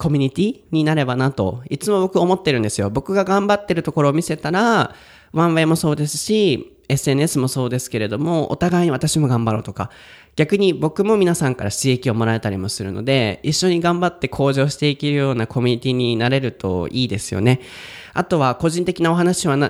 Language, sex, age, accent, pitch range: Japanese, male, 20-39, native, 120-160 Hz